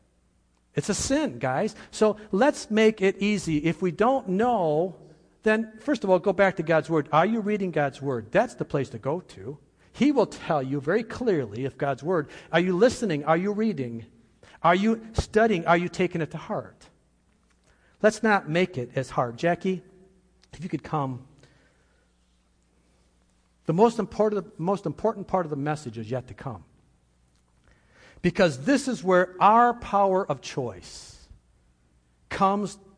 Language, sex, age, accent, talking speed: English, male, 50-69, American, 160 wpm